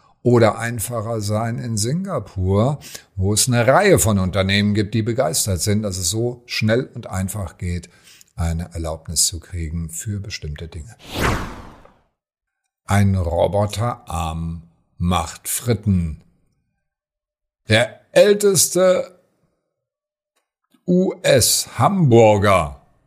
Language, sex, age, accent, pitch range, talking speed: German, male, 50-69, German, 95-130 Hz, 95 wpm